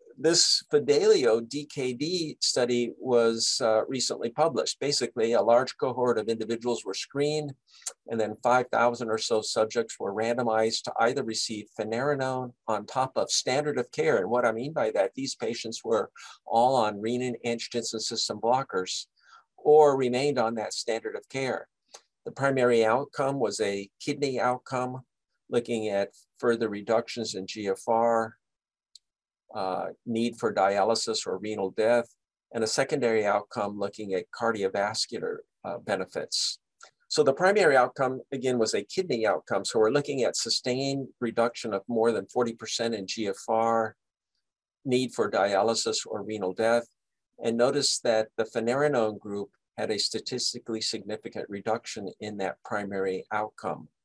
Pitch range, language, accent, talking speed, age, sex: 110-130 Hz, English, American, 140 wpm, 50-69, male